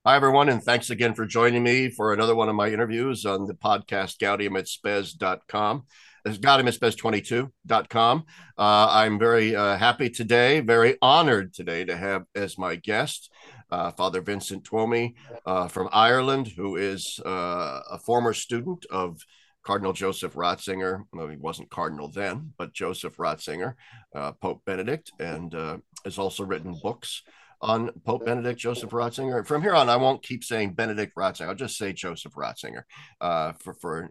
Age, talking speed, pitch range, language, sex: 50-69, 160 wpm, 100-125 Hz, English, male